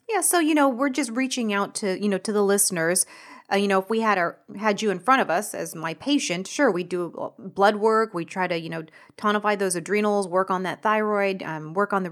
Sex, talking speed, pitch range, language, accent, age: female, 255 wpm, 180-220 Hz, English, American, 30-49